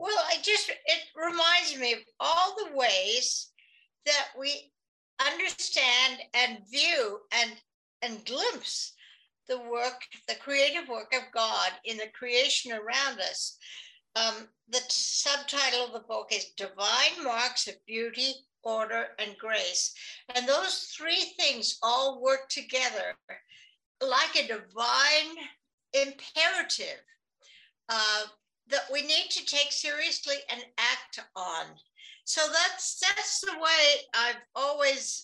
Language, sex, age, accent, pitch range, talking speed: English, female, 60-79, American, 235-315 Hz, 125 wpm